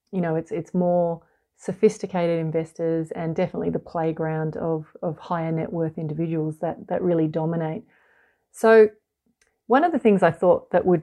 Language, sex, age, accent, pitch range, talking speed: English, female, 30-49, Australian, 165-200 Hz, 165 wpm